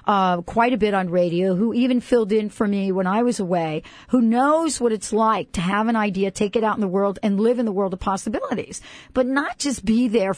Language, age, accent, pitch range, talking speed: English, 50-69, American, 195-245 Hz, 250 wpm